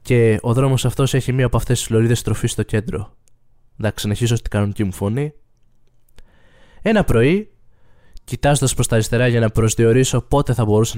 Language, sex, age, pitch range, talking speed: Greek, male, 20-39, 110-145 Hz, 170 wpm